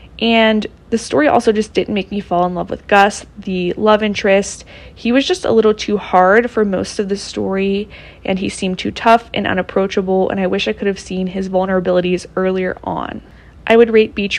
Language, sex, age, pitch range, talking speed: English, female, 20-39, 185-210 Hz, 210 wpm